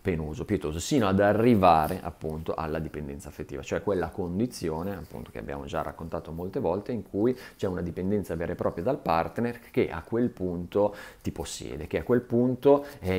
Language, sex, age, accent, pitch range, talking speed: Italian, male, 30-49, native, 80-95 Hz, 180 wpm